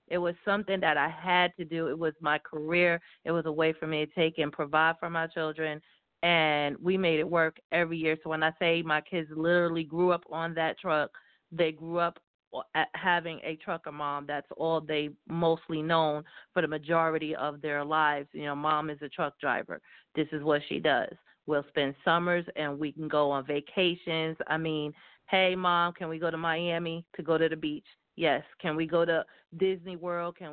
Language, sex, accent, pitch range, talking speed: English, female, American, 155-175 Hz, 205 wpm